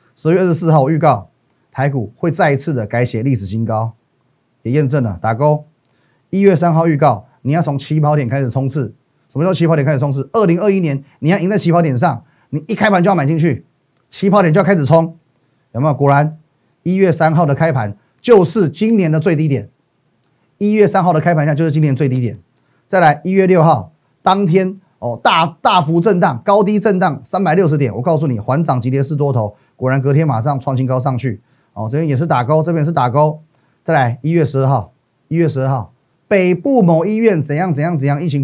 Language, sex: Chinese, male